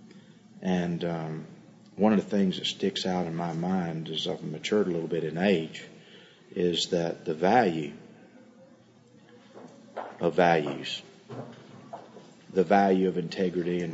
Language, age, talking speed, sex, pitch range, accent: English, 40-59, 135 wpm, male, 85-100 Hz, American